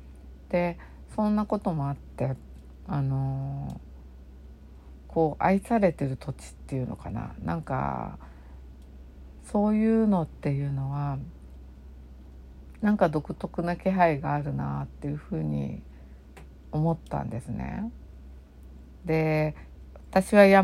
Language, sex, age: Japanese, female, 50-69